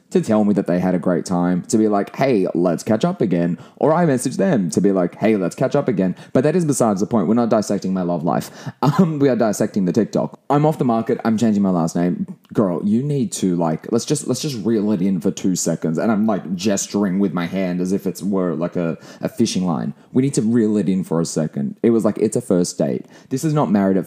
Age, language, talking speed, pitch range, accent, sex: 20-39, English, 270 wpm, 95-135 Hz, Australian, male